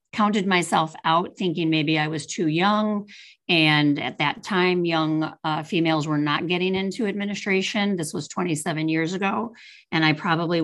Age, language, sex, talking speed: 40-59, English, female, 165 wpm